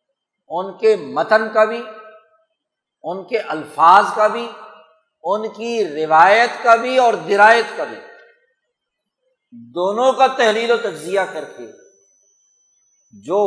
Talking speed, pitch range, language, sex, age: 120 wpm, 180-240 Hz, Urdu, male, 60-79